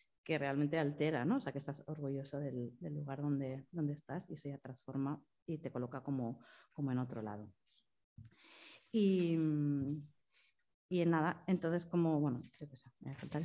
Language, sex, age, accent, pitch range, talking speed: Spanish, female, 30-49, Spanish, 145-170 Hz, 160 wpm